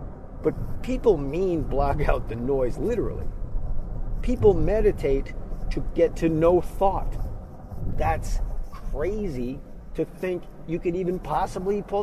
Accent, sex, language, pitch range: American, male, English, 115-175 Hz